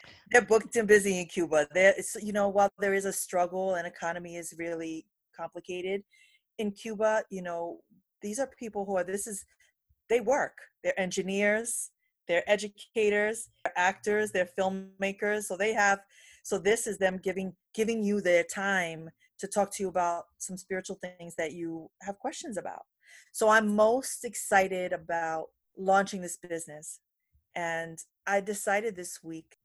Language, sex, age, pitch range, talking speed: English, female, 30-49, 160-200 Hz, 160 wpm